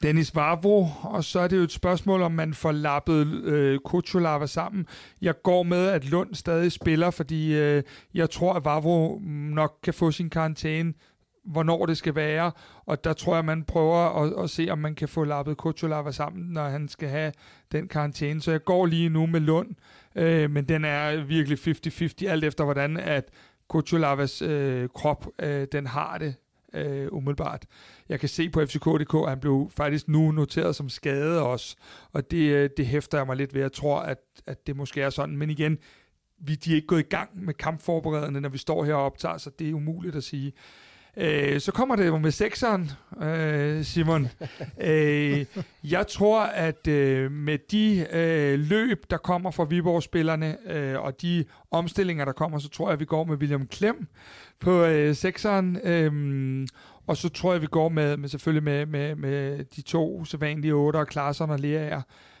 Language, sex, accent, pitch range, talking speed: Danish, male, native, 145-170 Hz, 185 wpm